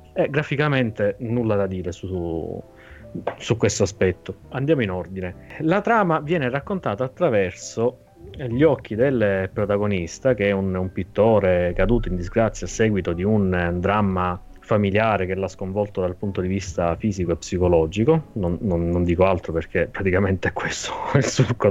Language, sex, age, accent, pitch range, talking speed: Italian, male, 30-49, native, 95-125 Hz, 155 wpm